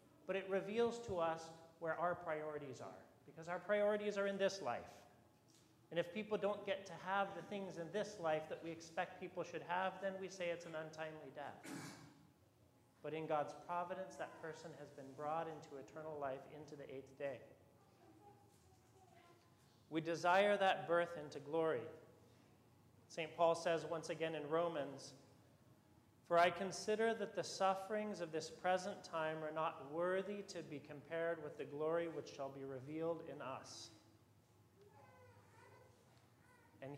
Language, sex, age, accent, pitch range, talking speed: English, male, 40-59, American, 135-180 Hz, 155 wpm